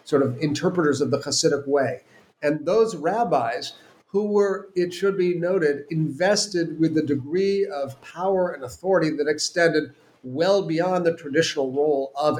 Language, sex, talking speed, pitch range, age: English, male, 155 wpm, 140-175 Hz, 50-69